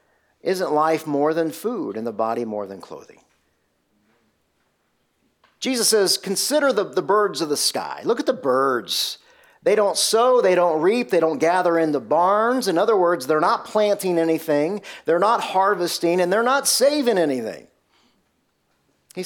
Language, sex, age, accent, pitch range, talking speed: English, male, 40-59, American, 140-195 Hz, 160 wpm